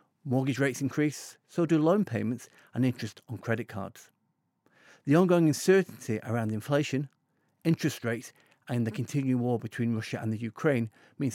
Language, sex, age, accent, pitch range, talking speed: English, male, 40-59, British, 115-150 Hz, 155 wpm